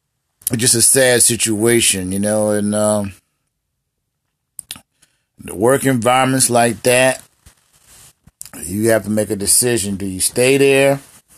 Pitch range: 95-115 Hz